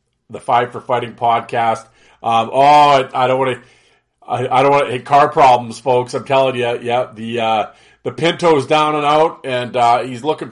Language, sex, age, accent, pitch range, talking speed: English, male, 40-59, American, 110-130 Hz, 200 wpm